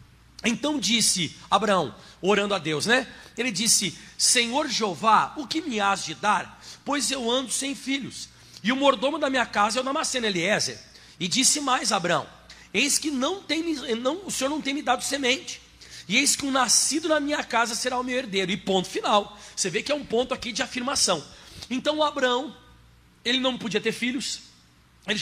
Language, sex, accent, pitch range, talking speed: Portuguese, male, Brazilian, 215-275 Hz, 195 wpm